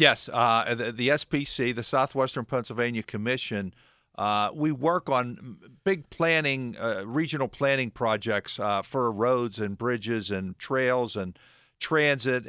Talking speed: 135 wpm